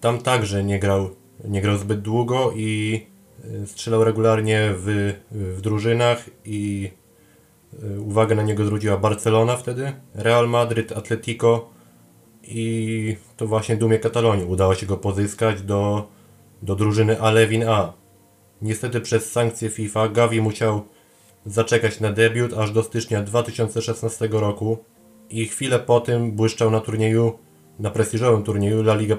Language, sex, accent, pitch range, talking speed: Polish, male, native, 105-115 Hz, 130 wpm